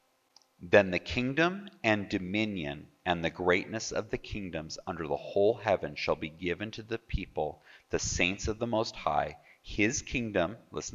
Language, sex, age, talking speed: English, male, 40-59, 165 wpm